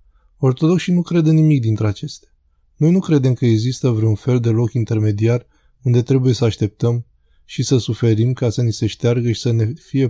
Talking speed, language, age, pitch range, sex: 190 wpm, Romanian, 20-39, 110-130 Hz, male